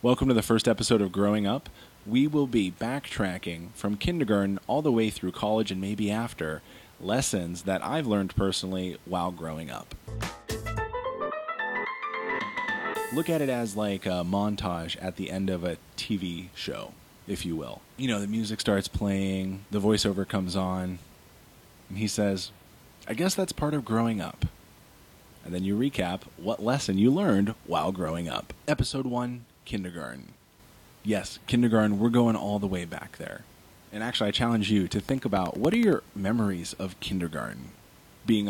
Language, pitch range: English, 95-115 Hz